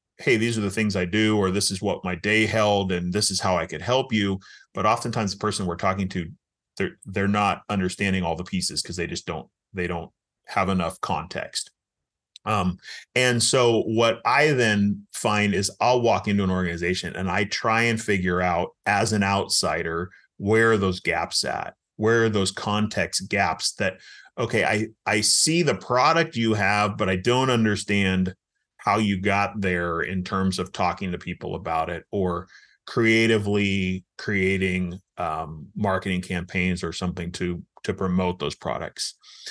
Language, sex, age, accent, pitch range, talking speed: English, male, 30-49, American, 95-115 Hz, 175 wpm